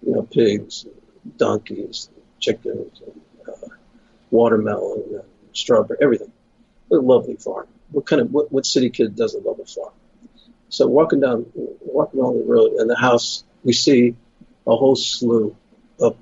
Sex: male